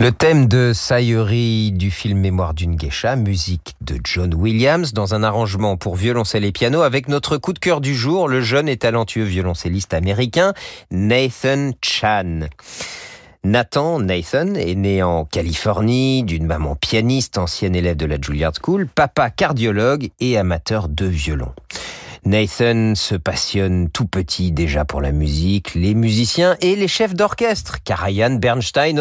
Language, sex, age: French, male, 40-59